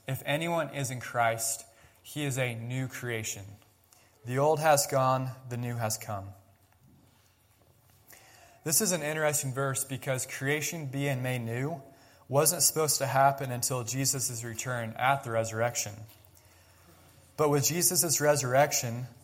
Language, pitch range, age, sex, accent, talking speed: English, 110-140 Hz, 20-39, male, American, 130 wpm